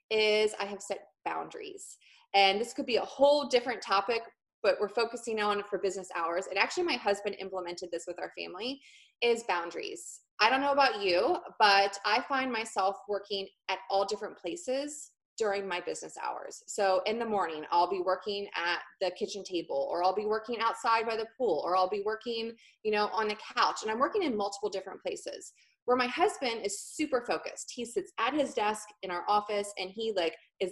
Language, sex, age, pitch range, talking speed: English, female, 20-39, 195-255 Hz, 200 wpm